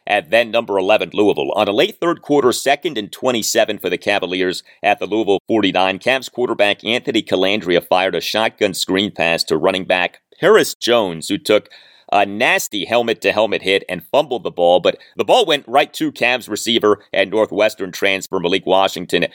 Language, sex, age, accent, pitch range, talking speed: English, male, 30-49, American, 95-125 Hz, 175 wpm